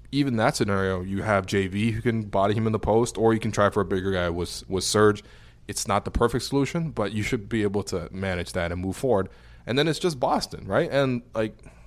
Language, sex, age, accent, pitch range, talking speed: English, male, 20-39, American, 95-125 Hz, 245 wpm